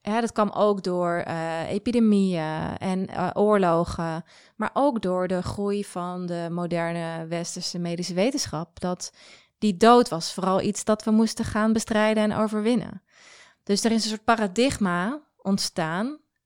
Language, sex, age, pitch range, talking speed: Dutch, female, 20-39, 170-215 Hz, 150 wpm